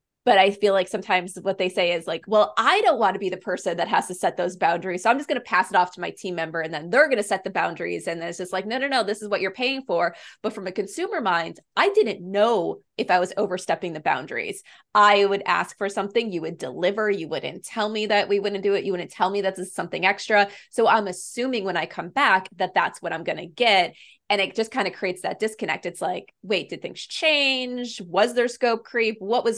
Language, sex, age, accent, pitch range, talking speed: English, female, 20-39, American, 180-220 Hz, 270 wpm